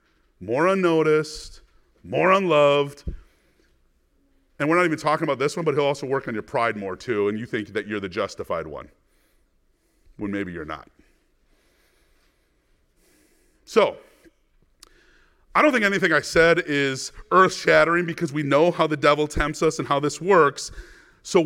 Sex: male